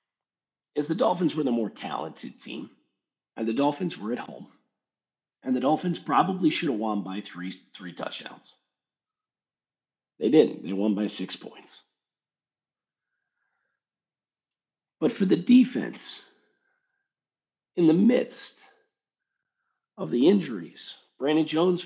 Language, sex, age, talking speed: English, male, 40-59, 120 wpm